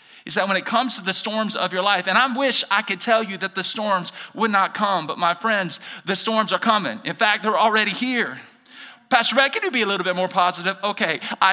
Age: 40-59